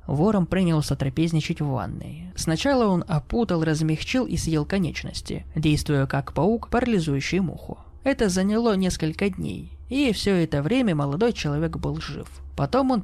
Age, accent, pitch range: 20-39, native, 155-215 Hz